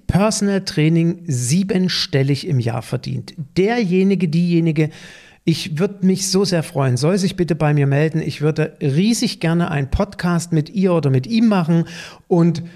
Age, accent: 50-69, German